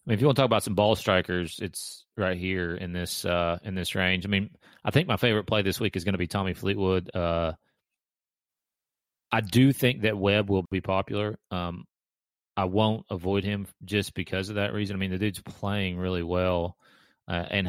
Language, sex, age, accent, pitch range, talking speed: English, male, 30-49, American, 90-105 Hz, 215 wpm